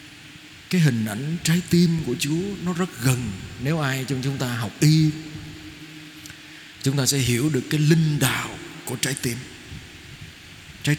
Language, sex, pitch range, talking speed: Vietnamese, male, 120-150 Hz, 160 wpm